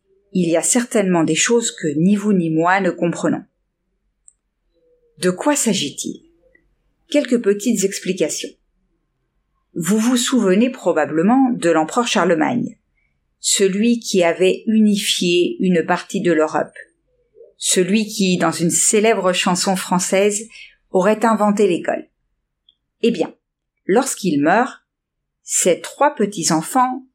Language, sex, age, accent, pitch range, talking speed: French, female, 50-69, French, 170-240 Hz, 115 wpm